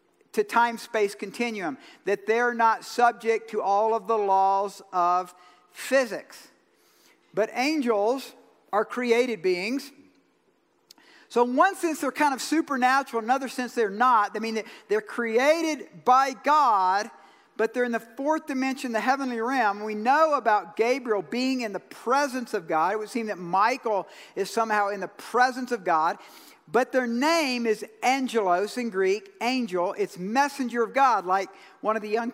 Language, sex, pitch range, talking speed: English, male, 205-270 Hz, 155 wpm